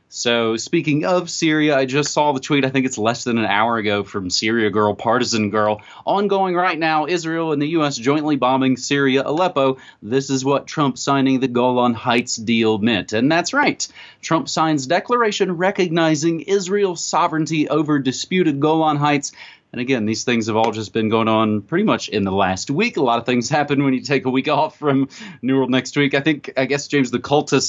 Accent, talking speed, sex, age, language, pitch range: American, 205 wpm, male, 30-49, English, 120-170 Hz